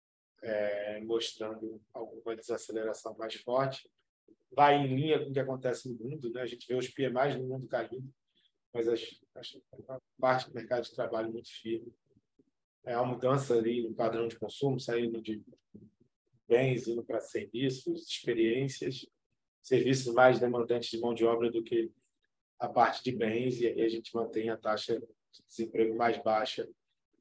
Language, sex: Portuguese, male